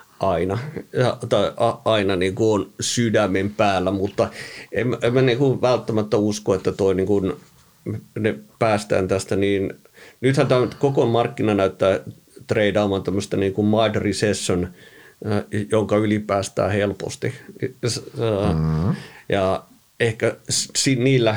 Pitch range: 95-120 Hz